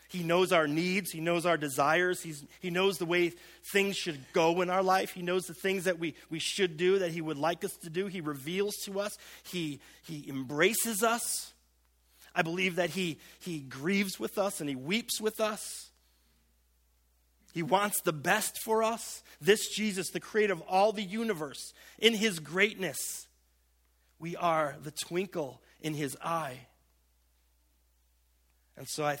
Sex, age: male, 40-59